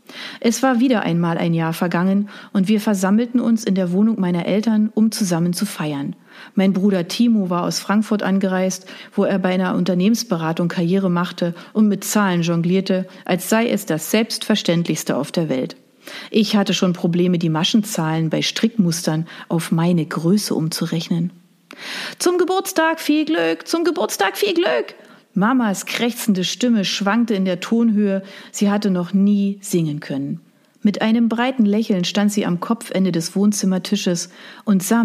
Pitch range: 175-220 Hz